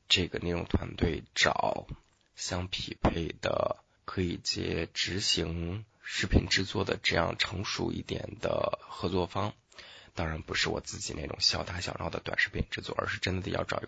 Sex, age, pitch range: male, 20-39, 90-105 Hz